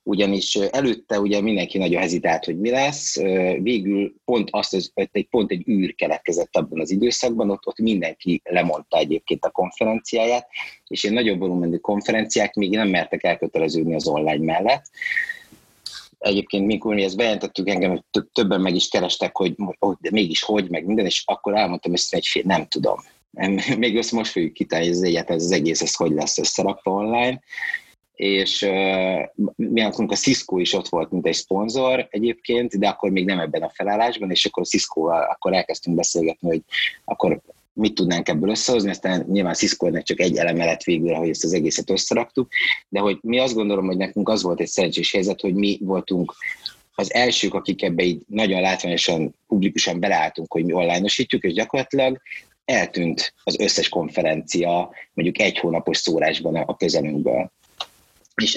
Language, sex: Hungarian, male